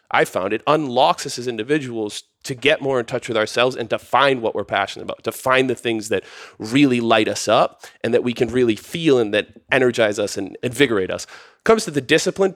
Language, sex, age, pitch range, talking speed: English, male, 30-49, 110-150 Hz, 225 wpm